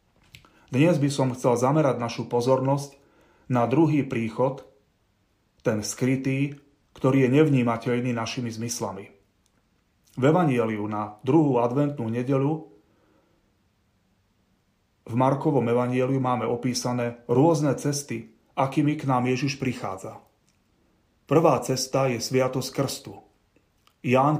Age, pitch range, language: 30-49, 110-135 Hz, Slovak